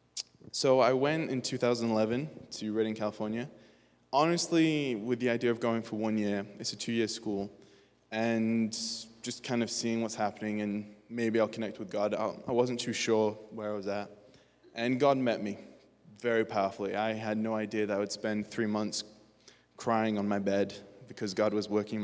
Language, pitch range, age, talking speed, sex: English, 105-115 Hz, 20-39, 180 wpm, male